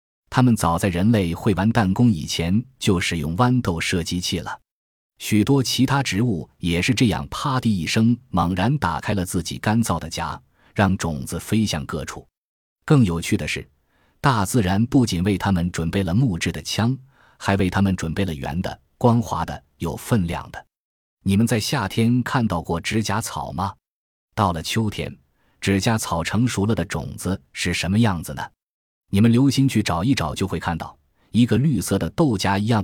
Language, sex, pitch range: Chinese, male, 85-115 Hz